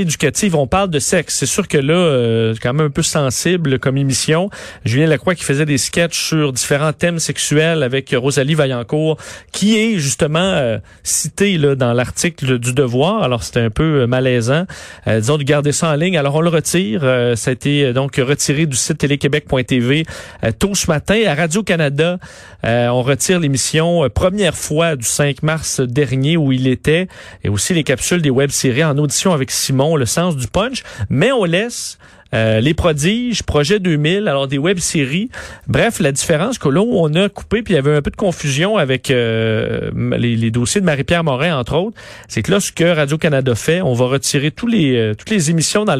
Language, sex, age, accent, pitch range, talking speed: French, male, 40-59, Canadian, 130-175 Hz, 205 wpm